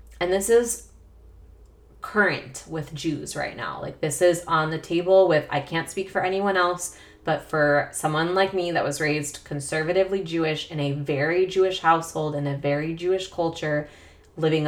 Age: 20-39